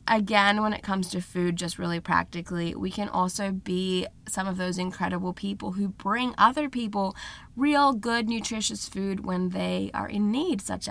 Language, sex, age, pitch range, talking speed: English, female, 20-39, 185-225 Hz, 175 wpm